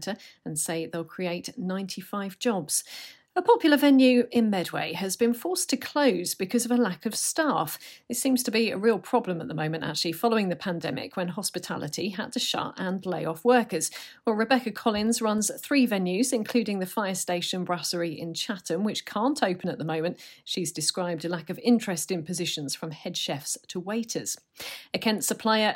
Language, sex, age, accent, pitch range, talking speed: English, female, 40-59, British, 175-240 Hz, 185 wpm